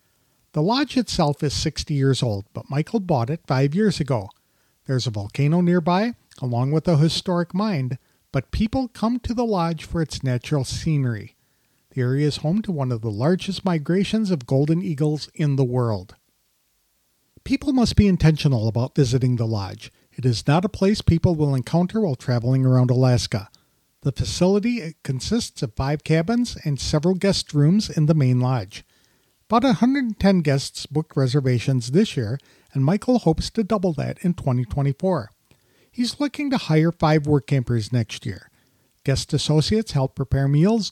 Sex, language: male, English